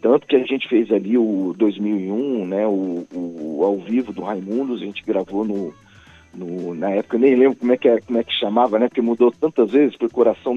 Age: 40-59